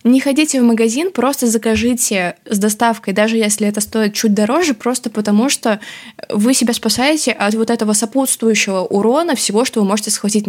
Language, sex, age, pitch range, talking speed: Russian, female, 20-39, 205-245 Hz, 170 wpm